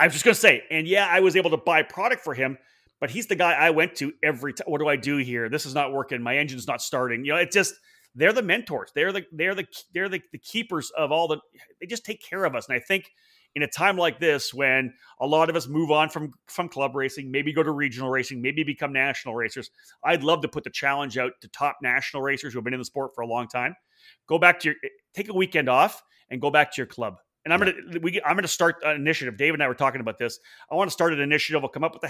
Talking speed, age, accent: 280 wpm, 30-49, Canadian